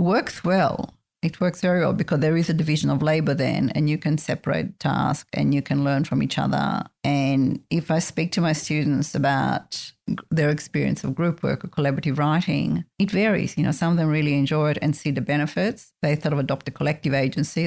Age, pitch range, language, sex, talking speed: 50-69, 145-175 Hz, English, female, 215 wpm